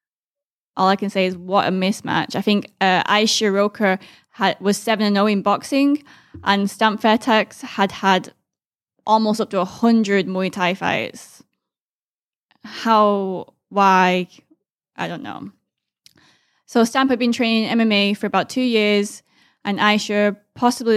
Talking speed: 140 wpm